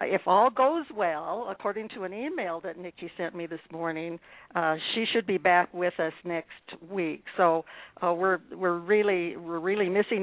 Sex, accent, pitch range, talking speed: female, American, 175-225 Hz, 180 wpm